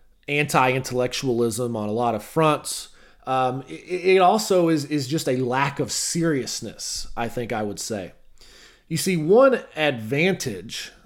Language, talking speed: English, 140 wpm